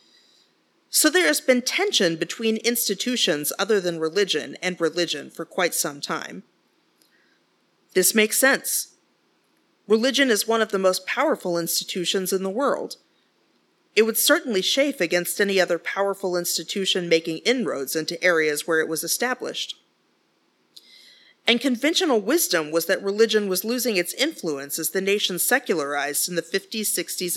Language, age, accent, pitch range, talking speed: English, 40-59, American, 175-235 Hz, 140 wpm